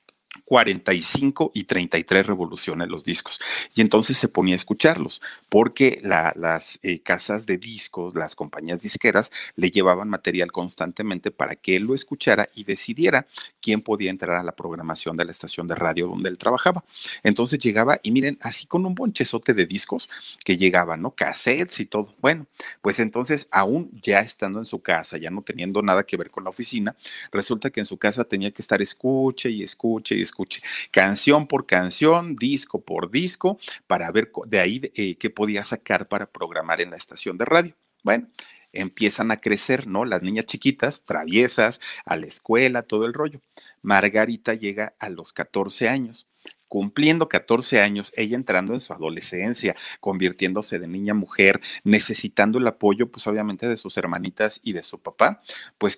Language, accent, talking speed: Spanish, Mexican, 175 wpm